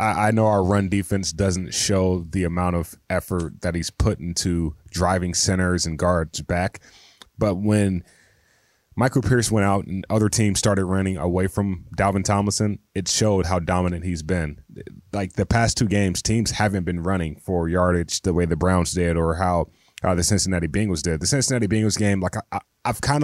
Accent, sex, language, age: American, male, English, 20-39